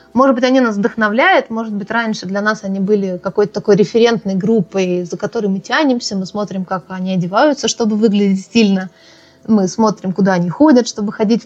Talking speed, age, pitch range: 185 wpm, 20-39, 195-245 Hz